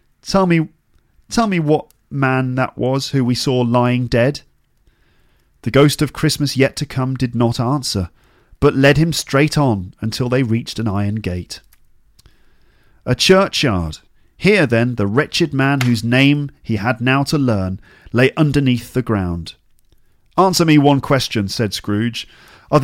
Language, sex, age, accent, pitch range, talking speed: English, male, 40-59, British, 105-150 Hz, 155 wpm